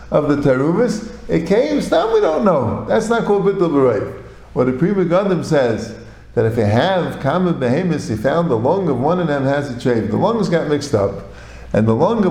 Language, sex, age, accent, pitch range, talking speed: English, male, 50-69, American, 120-195 Hz, 215 wpm